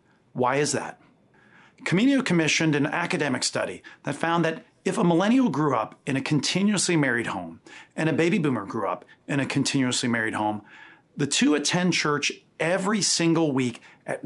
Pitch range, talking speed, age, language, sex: 135-170 Hz, 170 wpm, 40-59, English, male